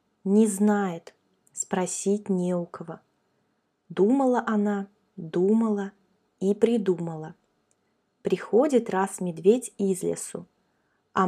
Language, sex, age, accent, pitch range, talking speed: Russian, female, 20-39, native, 190-230 Hz, 90 wpm